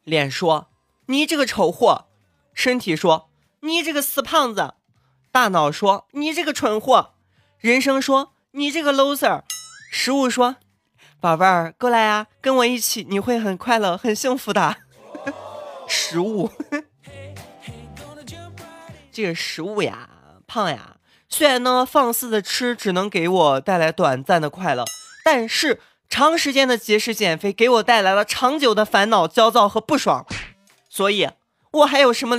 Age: 20-39